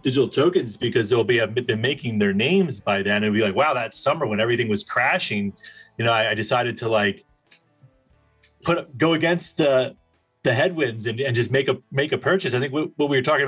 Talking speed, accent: 220 wpm, American